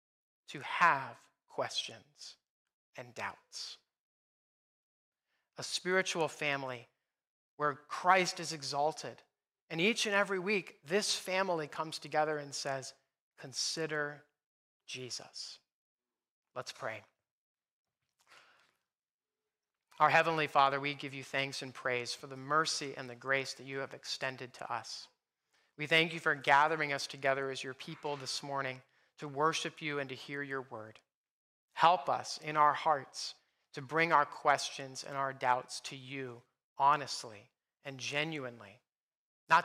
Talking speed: 130 wpm